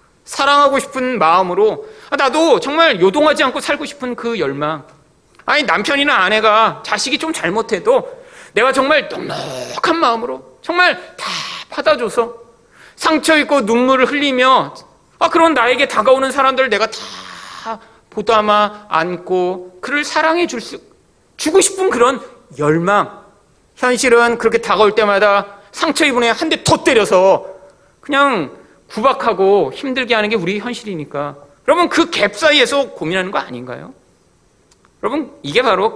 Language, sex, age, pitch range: Korean, male, 40-59, 185-305 Hz